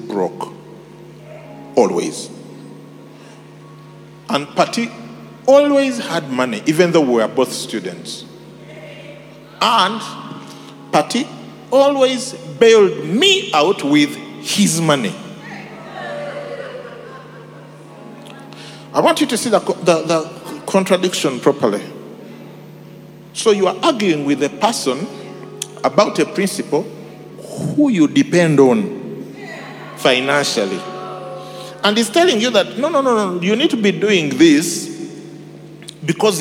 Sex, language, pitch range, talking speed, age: male, English, 155-235 Hz, 105 wpm, 50-69